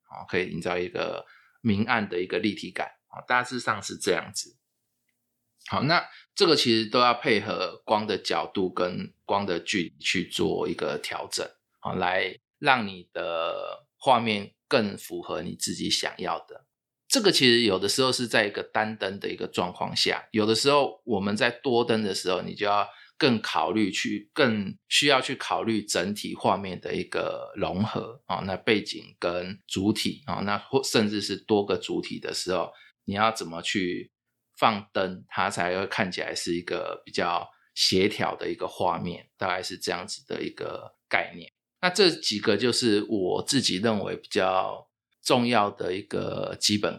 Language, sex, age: Chinese, male, 20-39